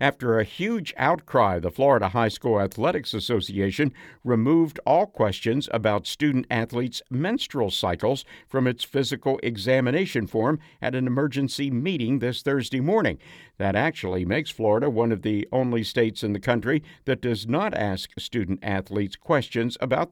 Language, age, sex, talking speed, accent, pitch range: English, 60-79, male, 150 wpm, American, 105-135 Hz